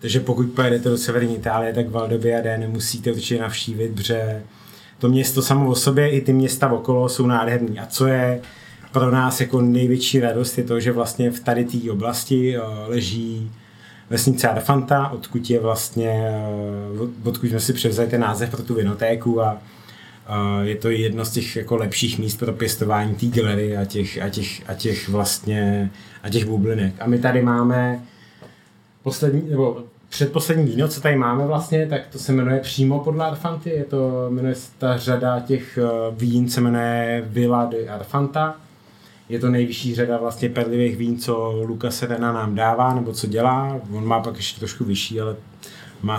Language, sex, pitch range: Czech, male, 110-125 Hz